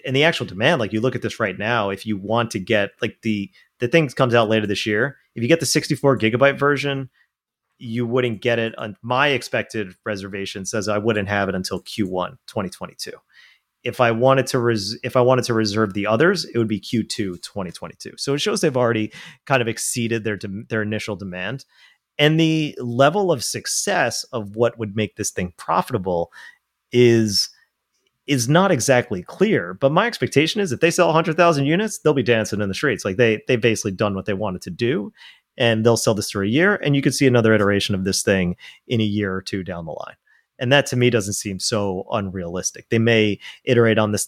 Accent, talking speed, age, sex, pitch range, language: American, 215 wpm, 30-49, male, 100-130 Hz, English